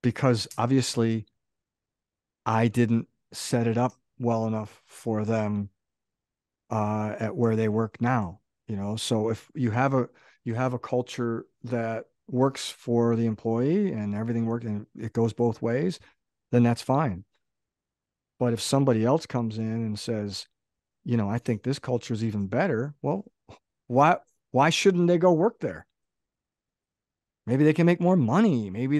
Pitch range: 115-135 Hz